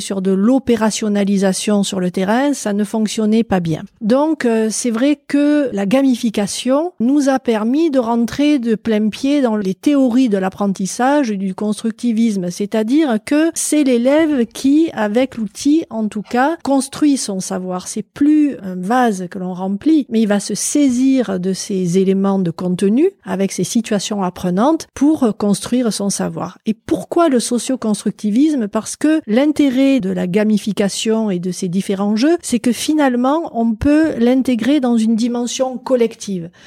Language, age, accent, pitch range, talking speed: French, 40-59, French, 200-270 Hz, 155 wpm